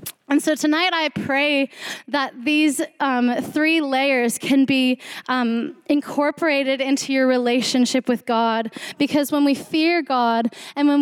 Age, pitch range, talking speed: 10-29, 255-295 Hz, 140 wpm